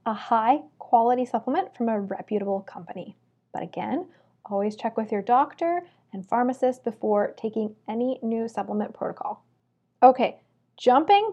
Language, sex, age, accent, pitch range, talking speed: English, female, 20-39, American, 225-285 Hz, 130 wpm